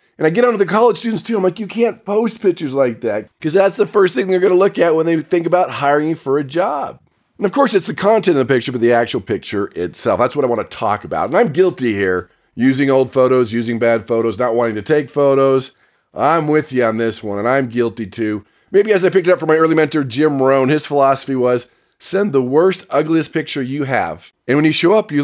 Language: English